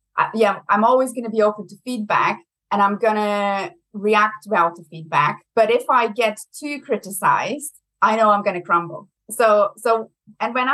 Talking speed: 185 wpm